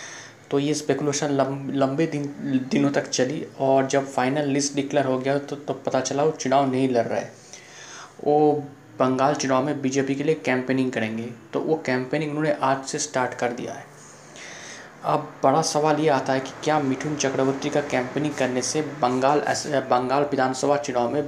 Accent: native